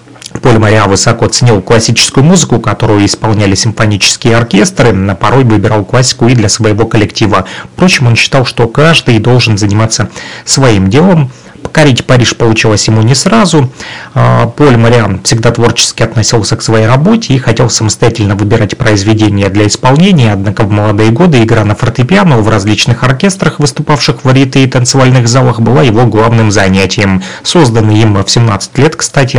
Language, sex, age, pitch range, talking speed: Russian, male, 30-49, 105-130 Hz, 150 wpm